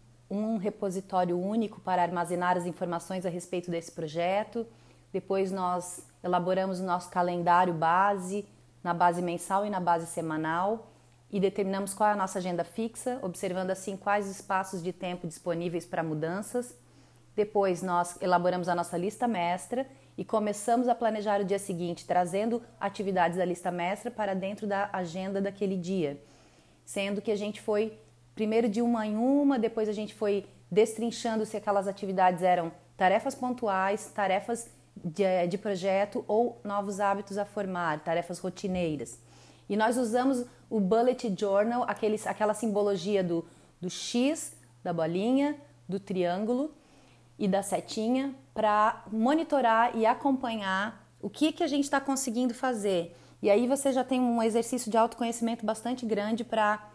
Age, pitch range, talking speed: 30-49, 180-225 Hz, 150 wpm